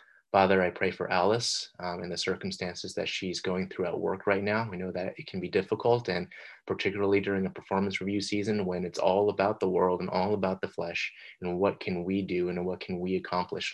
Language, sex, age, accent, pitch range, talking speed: English, male, 20-39, American, 90-100 Hz, 225 wpm